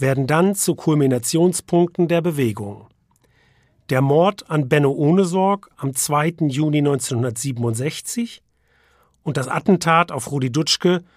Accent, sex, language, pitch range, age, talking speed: German, male, German, 140-190 Hz, 40-59, 115 wpm